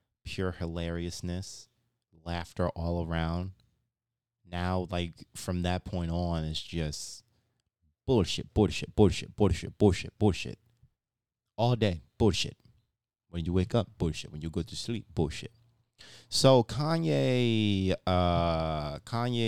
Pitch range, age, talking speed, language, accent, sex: 85-115 Hz, 20-39, 115 wpm, English, American, male